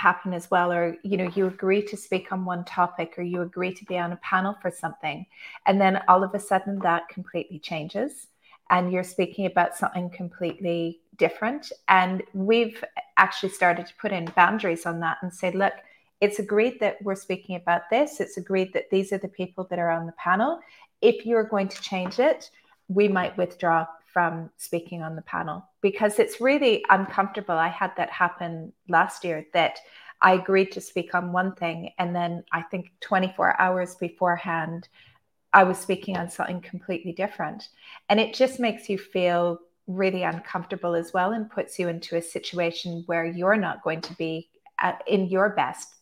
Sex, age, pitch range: female, 30-49, 170-195 Hz